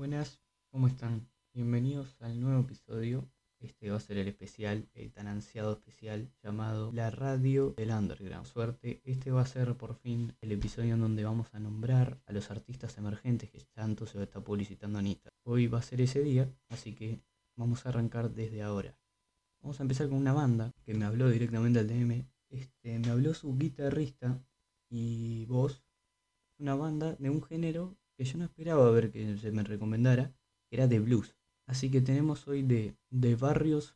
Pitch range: 105-130 Hz